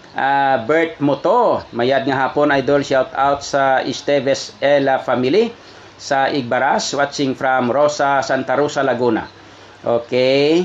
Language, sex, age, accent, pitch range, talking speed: English, male, 40-59, Filipino, 125-140 Hz, 125 wpm